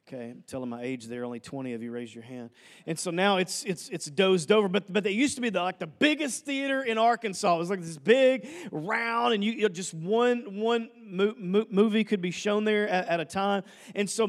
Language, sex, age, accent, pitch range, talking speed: English, male, 40-59, American, 195-245 Hz, 250 wpm